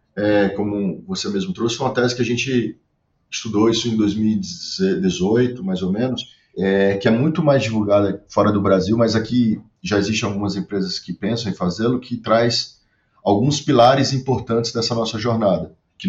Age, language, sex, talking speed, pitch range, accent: 30-49, Portuguese, male, 170 wpm, 100-120 Hz, Brazilian